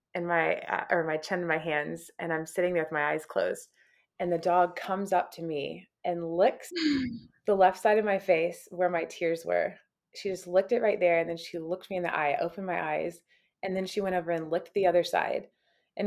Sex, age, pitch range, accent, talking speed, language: female, 20-39, 165-205 Hz, American, 235 wpm, English